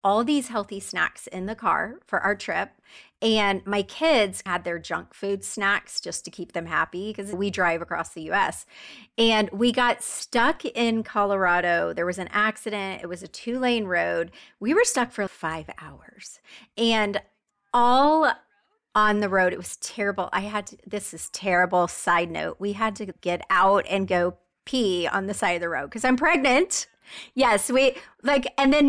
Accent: American